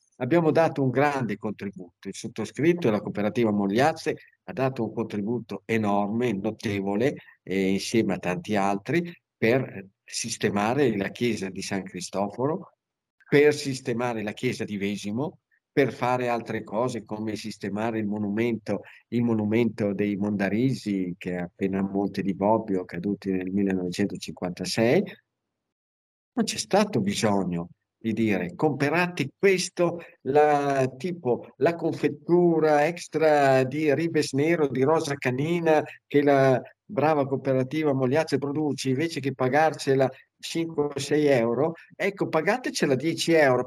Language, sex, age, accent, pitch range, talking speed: Italian, male, 50-69, native, 105-150 Hz, 125 wpm